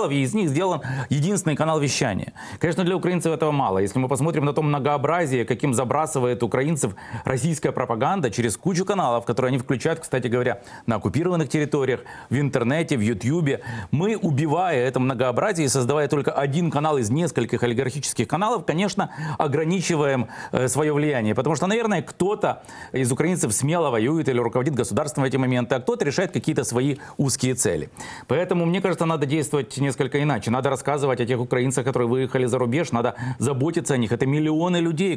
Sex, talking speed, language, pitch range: male, 165 wpm, Russian, 125-160 Hz